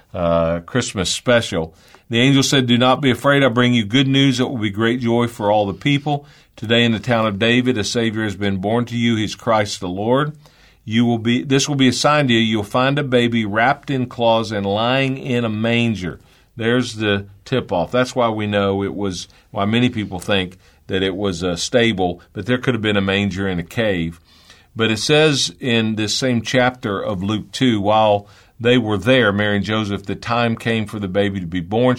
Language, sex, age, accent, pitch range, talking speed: English, male, 50-69, American, 100-120 Hz, 220 wpm